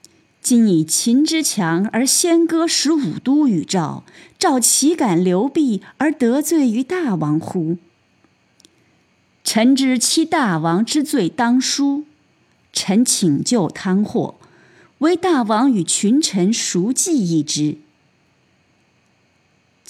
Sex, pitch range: female, 165-270 Hz